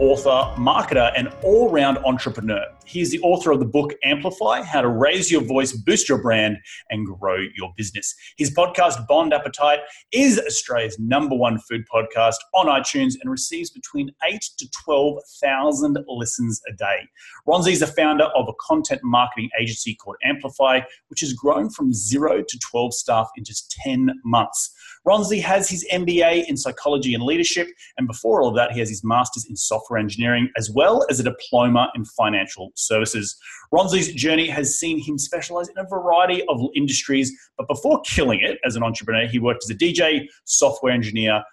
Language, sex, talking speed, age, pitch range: English, male, 175 wpm, 30-49, 115-170 Hz